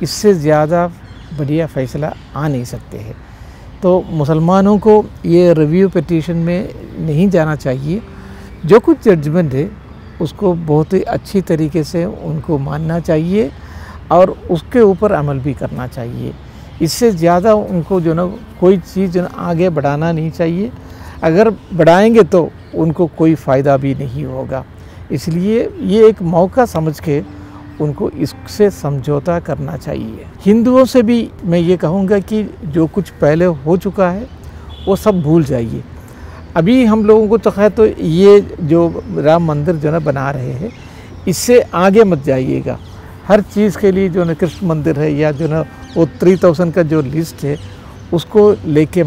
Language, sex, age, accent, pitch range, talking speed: Hindi, male, 50-69, native, 150-190 Hz, 155 wpm